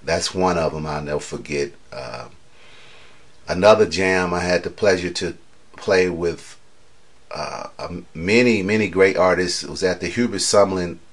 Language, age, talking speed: English, 40-59, 155 wpm